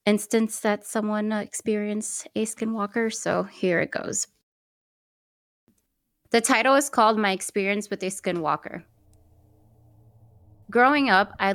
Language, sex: English, female